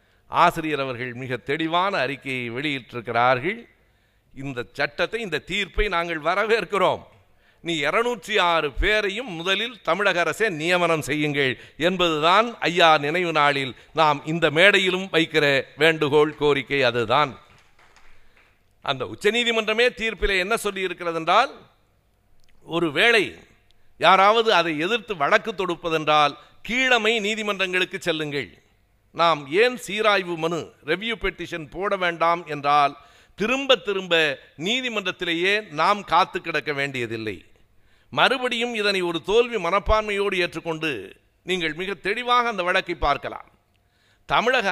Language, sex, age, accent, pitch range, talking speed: Tamil, male, 60-79, native, 145-205 Hz, 100 wpm